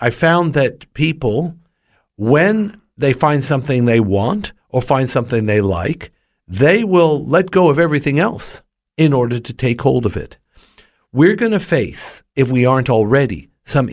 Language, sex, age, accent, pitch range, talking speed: English, male, 60-79, American, 125-170 Hz, 165 wpm